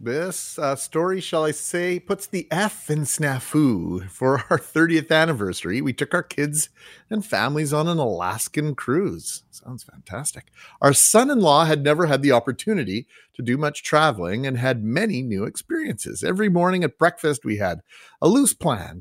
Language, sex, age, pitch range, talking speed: English, male, 40-59, 120-170 Hz, 165 wpm